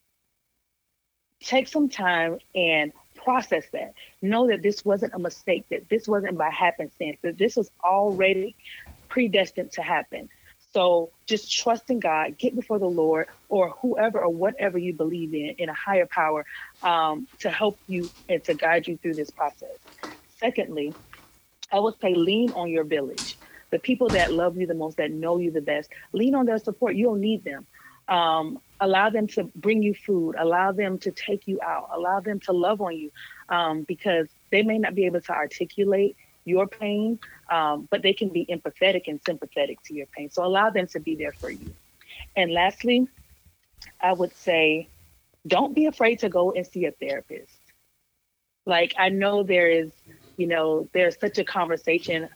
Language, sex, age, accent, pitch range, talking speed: English, female, 40-59, American, 165-210 Hz, 180 wpm